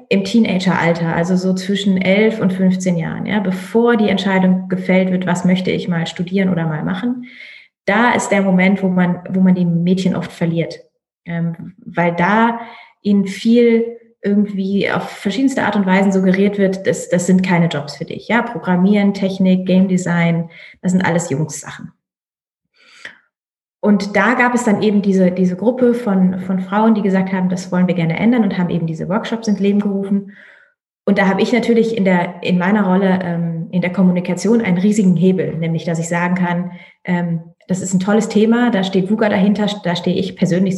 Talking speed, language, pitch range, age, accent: 190 wpm, German, 170-200 Hz, 30-49, German